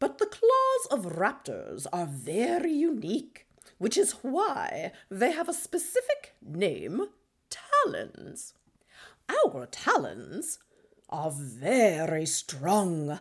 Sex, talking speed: female, 100 wpm